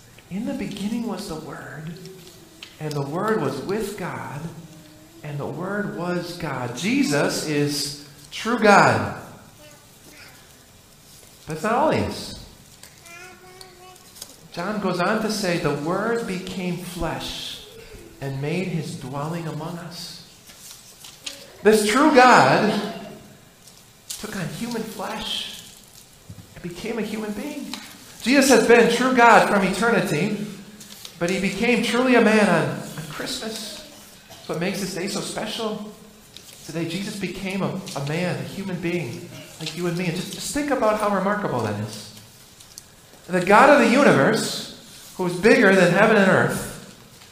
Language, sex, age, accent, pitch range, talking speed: English, male, 50-69, American, 165-215 Hz, 135 wpm